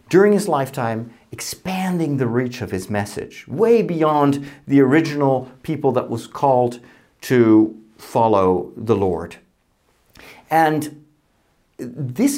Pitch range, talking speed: 130-200 Hz, 110 wpm